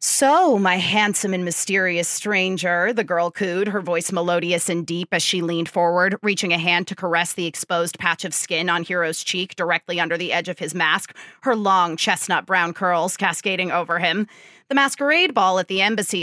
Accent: American